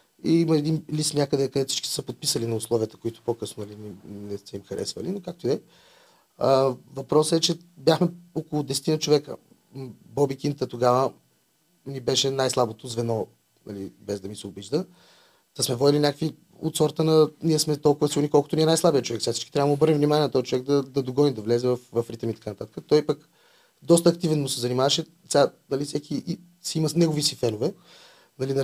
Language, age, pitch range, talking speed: Bulgarian, 30-49, 125-155 Hz, 200 wpm